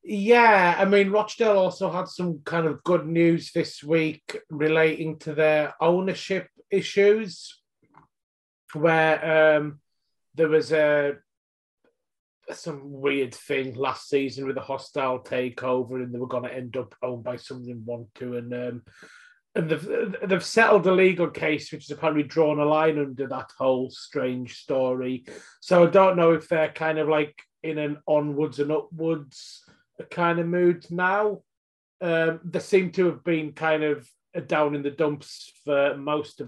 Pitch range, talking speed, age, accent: 140-170 Hz, 160 wpm, 30-49, British